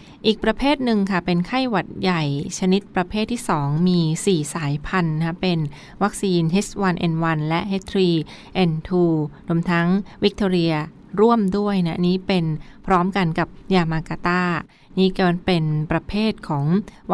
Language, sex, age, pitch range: Thai, female, 20-39, 170-205 Hz